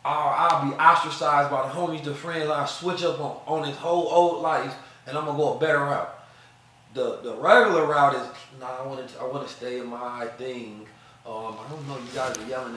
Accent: American